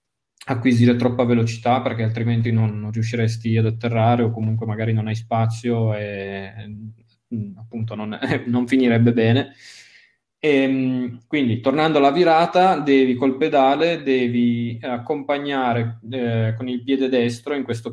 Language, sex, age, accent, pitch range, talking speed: Italian, male, 20-39, native, 115-130 Hz, 130 wpm